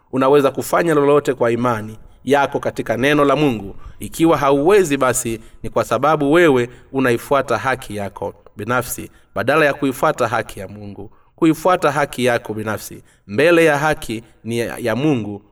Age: 30-49